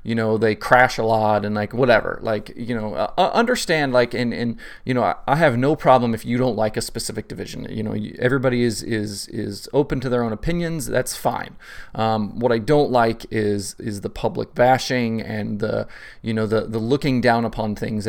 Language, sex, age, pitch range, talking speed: English, male, 30-49, 110-125 Hz, 215 wpm